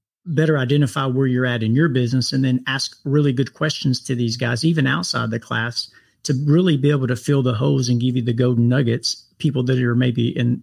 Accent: American